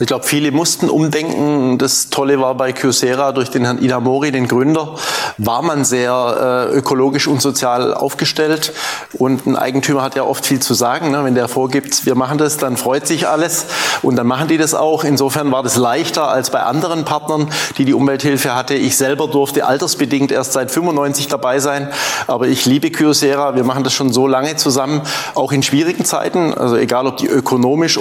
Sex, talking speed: male, 195 wpm